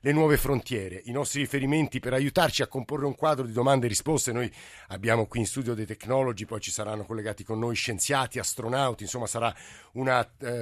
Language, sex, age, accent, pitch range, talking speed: Italian, male, 50-69, native, 115-135 Hz, 200 wpm